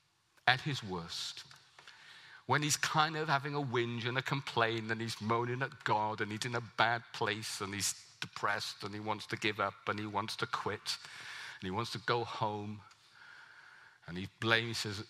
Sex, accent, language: male, British, English